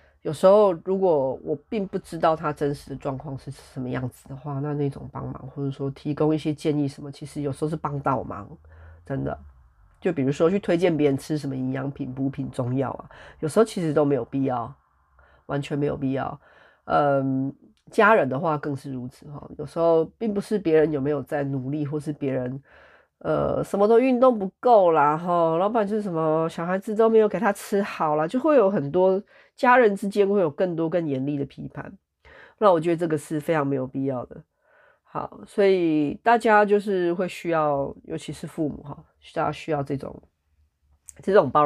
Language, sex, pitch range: Chinese, female, 140-185 Hz